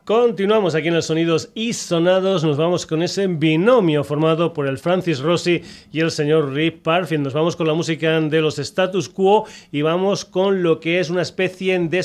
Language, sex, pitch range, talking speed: Spanish, male, 145-175 Hz, 200 wpm